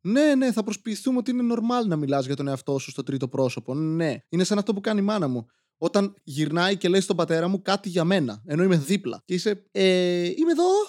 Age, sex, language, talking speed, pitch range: 20-39, male, Greek, 235 wpm, 140-190 Hz